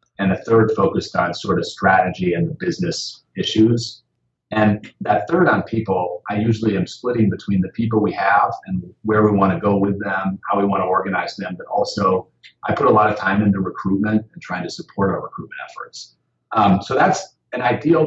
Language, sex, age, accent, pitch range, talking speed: English, male, 40-59, American, 95-115 Hz, 205 wpm